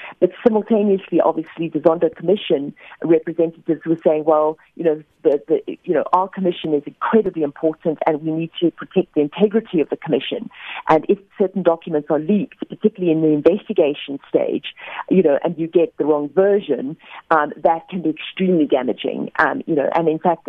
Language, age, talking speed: English, 40-59, 180 wpm